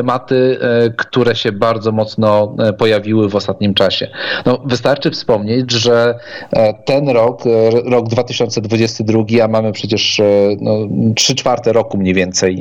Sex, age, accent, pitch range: male, 40-59, native, 115-130 Hz